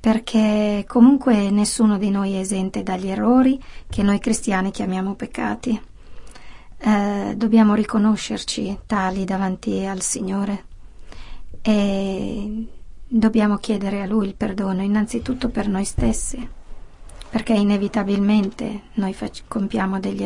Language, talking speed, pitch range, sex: Italian, 110 wpm, 195-225 Hz, female